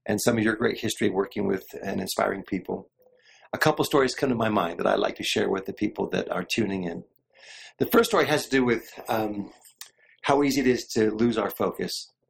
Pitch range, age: 120-160 Hz, 40-59